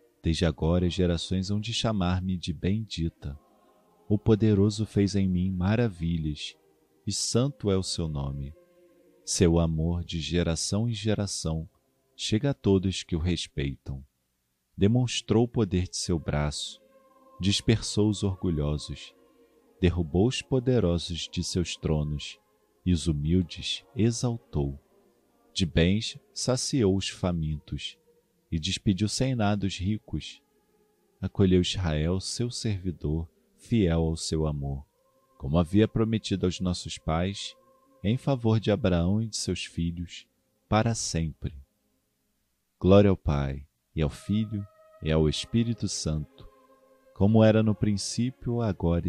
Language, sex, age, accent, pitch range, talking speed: Portuguese, male, 40-59, Brazilian, 80-110 Hz, 125 wpm